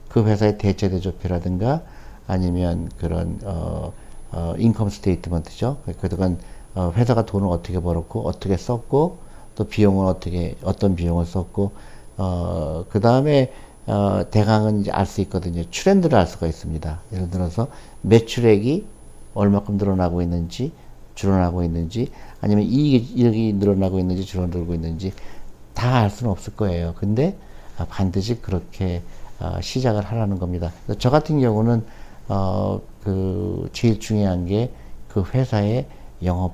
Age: 60-79